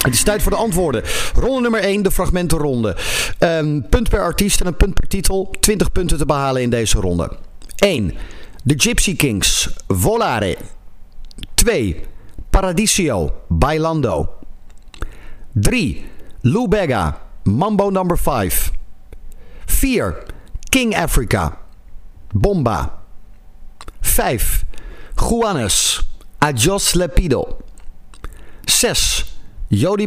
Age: 50-69